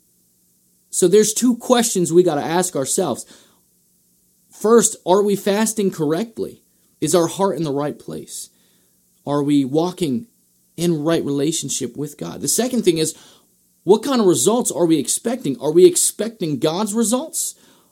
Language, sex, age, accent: English, male, 30-49, American